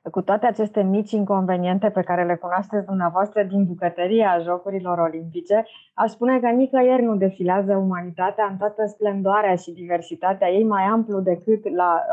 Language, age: Romanian, 20-39